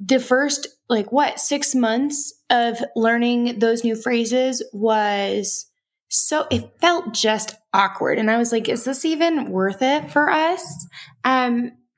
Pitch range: 190-245 Hz